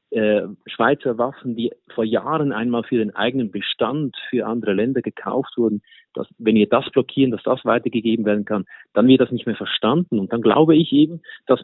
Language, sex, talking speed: German, male, 190 wpm